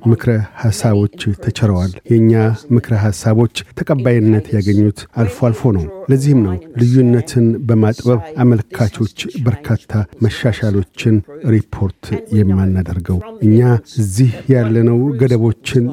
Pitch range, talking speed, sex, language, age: 110-130 Hz, 85 wpm, male, Amharic, 50-69